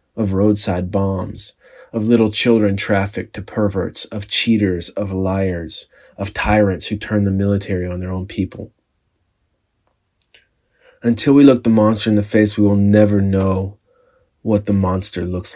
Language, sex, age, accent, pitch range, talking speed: English, male, 30-49, American, 95-115 Hz, 150 wpm